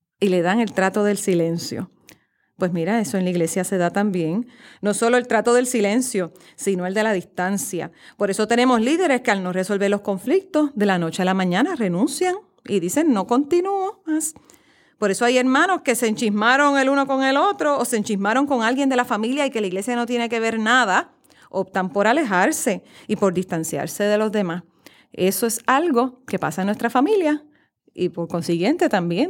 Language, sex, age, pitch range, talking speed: Spanish, female, 40-59, 190-260 Hz, 205 wpm